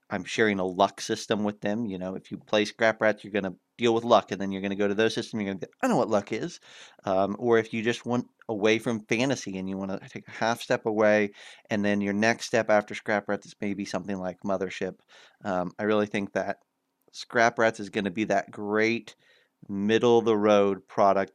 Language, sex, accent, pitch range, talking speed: English, male, American, 95-110 Hz, 235 wpm